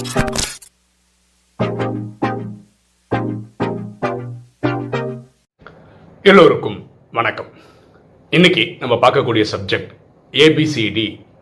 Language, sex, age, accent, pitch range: English, male, 40-59, Indian, 105-130 Hz